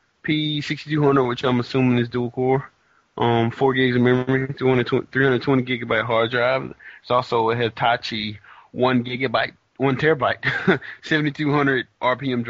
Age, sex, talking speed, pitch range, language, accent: 20-39, male, 120 wpm, 110-135 Hz, English, American